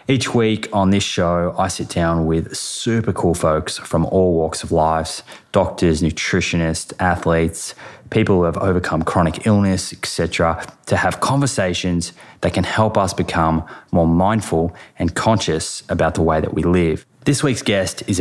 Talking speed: 160 wpm